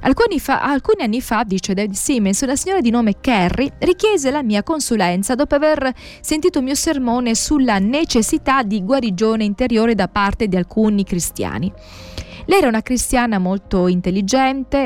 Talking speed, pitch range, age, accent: 155 wpm, 185-265 Hz, 20-39, native